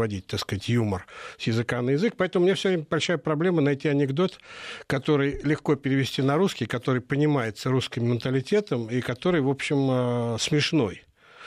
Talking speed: 155 wpm